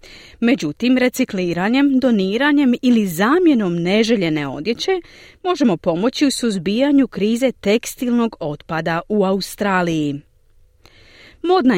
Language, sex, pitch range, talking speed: Croatian, female, 175-260 Hz, 85 wpm